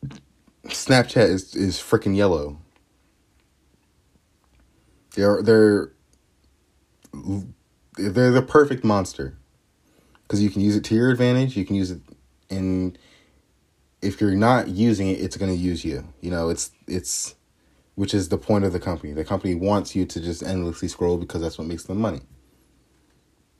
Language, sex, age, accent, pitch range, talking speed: English, male, 30-49, American, 80-100 Hz, 145 wpm